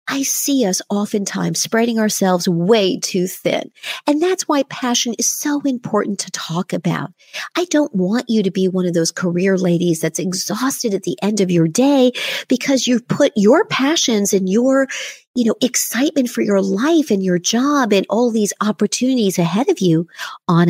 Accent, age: American, 50-69